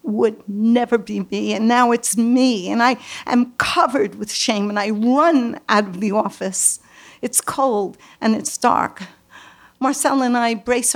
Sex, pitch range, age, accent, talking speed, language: female, 205-255 Hz, 60-79, American, 165 wpm, English